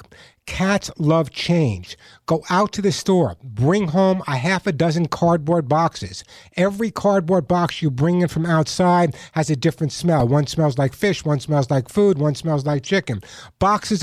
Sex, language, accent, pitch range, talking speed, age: male, English, American, 155-200 Hz, 175 wpm, 60-79